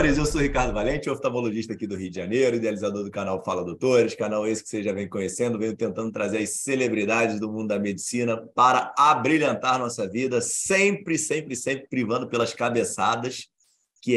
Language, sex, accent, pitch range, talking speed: Portuguese, male, Brazilian, 110-160 Hz, 180 wpm